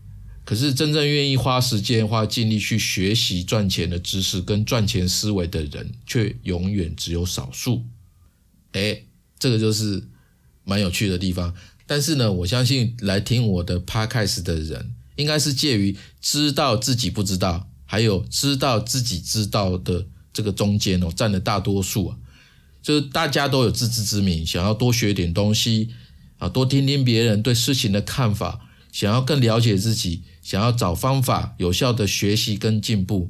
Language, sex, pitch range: Chinese, male, 95-120 Hz